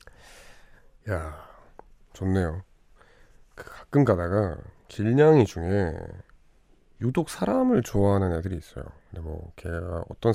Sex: male